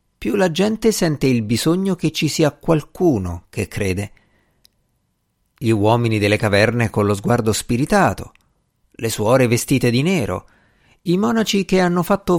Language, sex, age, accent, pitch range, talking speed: Italian, male, 50-69, native, 105-155 Hz, 145 wpm